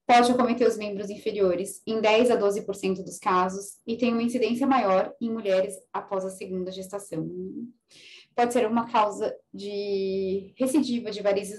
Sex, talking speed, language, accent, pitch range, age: female, 155 wpm, English, Brazilian, 195-235 Hz, 20-39